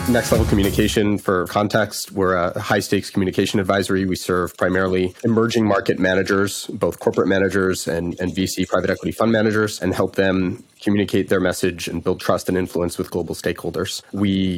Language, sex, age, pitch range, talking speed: English, male, 30-49, 95-105 Hz, 170 wpm